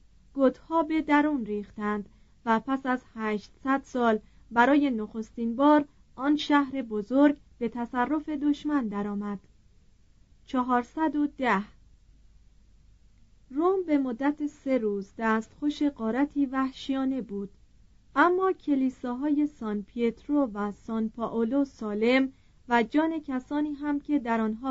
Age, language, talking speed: 30-49, Persian, 105 wpm